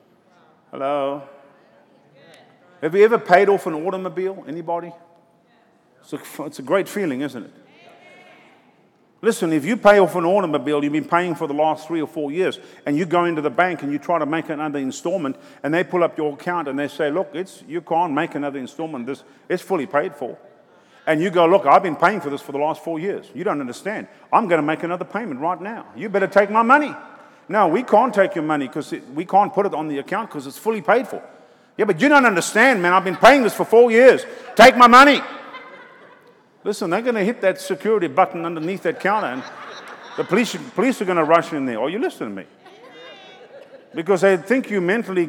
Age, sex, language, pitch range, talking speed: 50-69, male, English, 160-215 Hz, 215 wpm